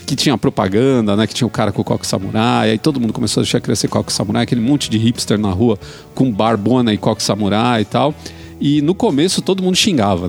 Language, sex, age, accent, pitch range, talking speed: Portuguese, male, 40-59, Brazilian, 115-155 Hz, 230 wpm